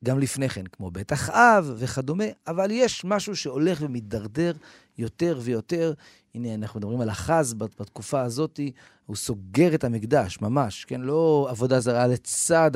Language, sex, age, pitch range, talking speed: Hebrew, male, 40-59, 105-155 Hz, 150 wpm